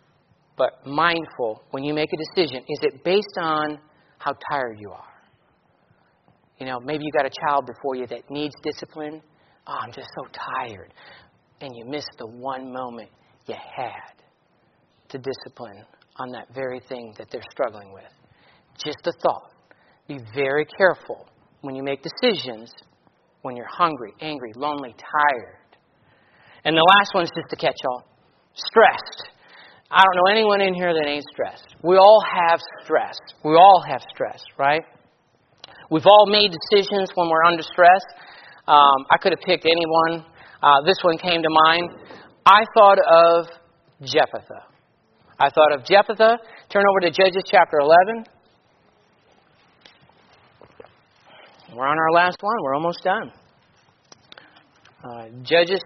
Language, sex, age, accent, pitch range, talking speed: English, male, 40-59, American, 140-180 Hz, 150 wpm